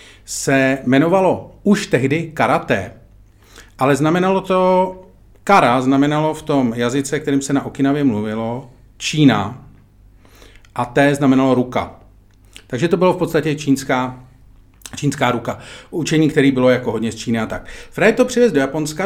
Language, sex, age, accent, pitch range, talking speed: Czech, male, 40-59, native, 120-155 Hz, 140 wpm